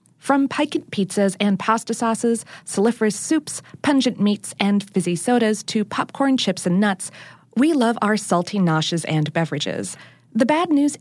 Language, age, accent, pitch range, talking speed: English, 40-59, American, 175-245 Hz, 155 wpm